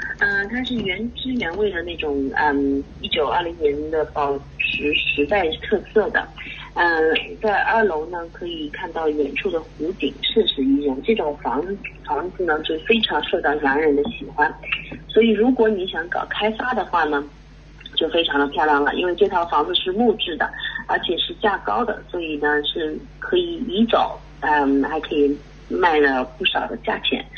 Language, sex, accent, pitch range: English, female, Chinese, 140-205 Hz